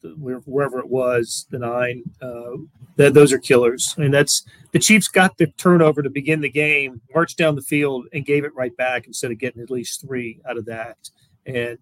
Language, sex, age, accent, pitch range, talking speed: English, male, 40-59, American, 125-150 Hz, 215 wpm